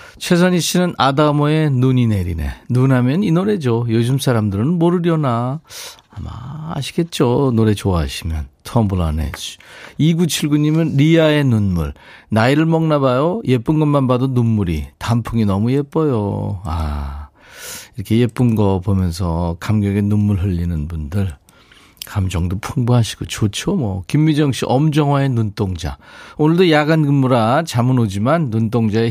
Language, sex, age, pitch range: Korean, male, 40-59, 100-150 Hz